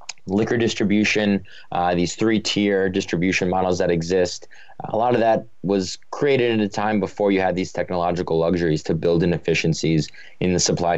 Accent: American